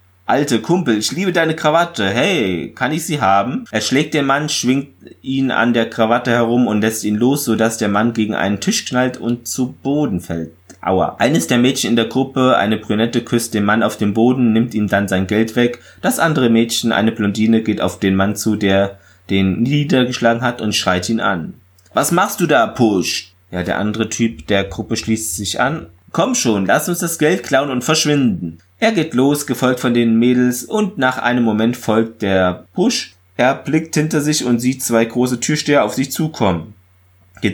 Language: German